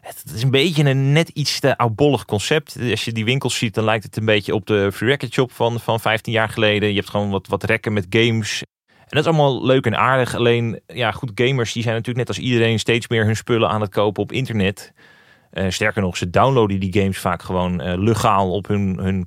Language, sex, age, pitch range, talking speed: Dutch, male, 30-49, 100-125 Hz, 240 wpm